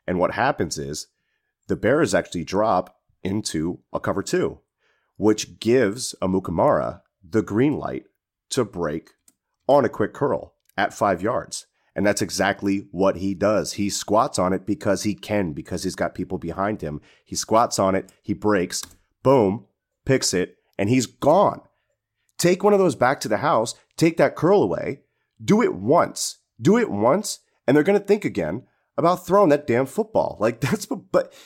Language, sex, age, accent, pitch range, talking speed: English, male, 30-49, American, 95-135 Hz, 175 wpm